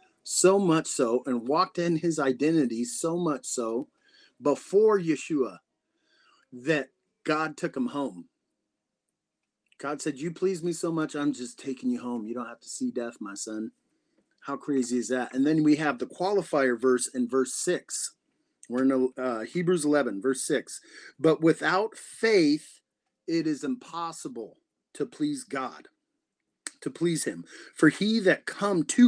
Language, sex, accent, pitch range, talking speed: English, male, American, 130-175 Hz, 155 wpm